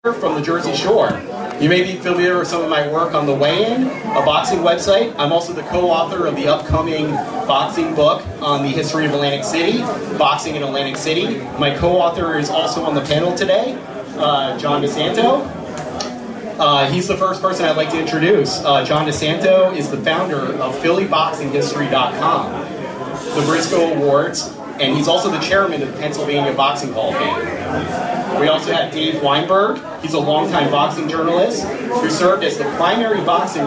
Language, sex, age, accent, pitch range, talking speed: English, male, 30-49, American, 145-180 Hz, 175 wpm